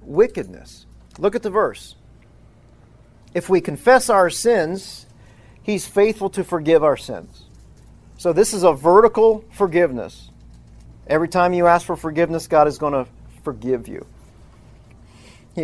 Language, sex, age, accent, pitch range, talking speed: English, male, 40-59, American, 120-180 Hz, 135 wpm